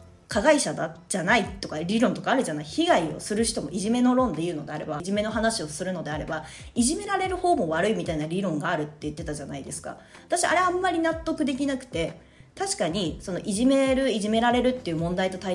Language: Japanese